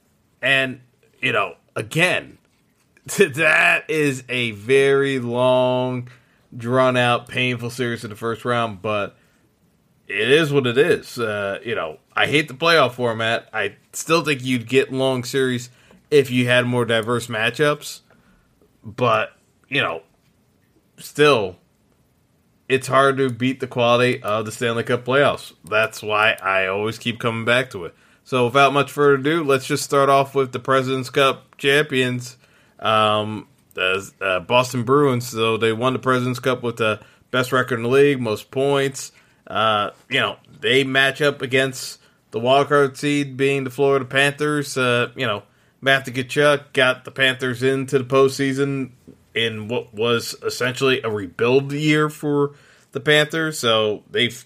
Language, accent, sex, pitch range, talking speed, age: English, American, male, 120-140 Hz, 150 wpm, 20-39